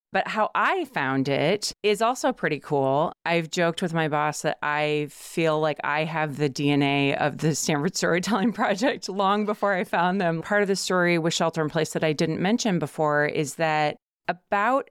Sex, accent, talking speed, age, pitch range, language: female, American, 185 wpm, 30-49, 150-190 Hz, English